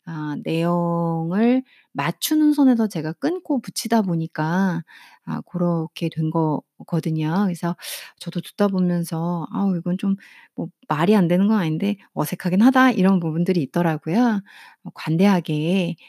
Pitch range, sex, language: 165-225 Hz, female, Korean